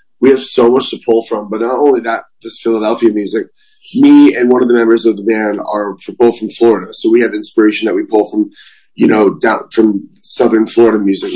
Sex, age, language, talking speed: male, 30-49, English, 220 wpm